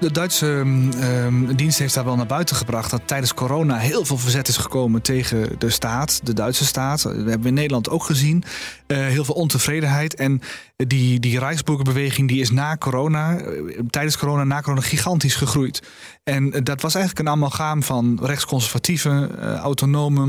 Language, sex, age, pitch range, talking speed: Dutch, male, 30-49, 125-145 Hz, 175 wpm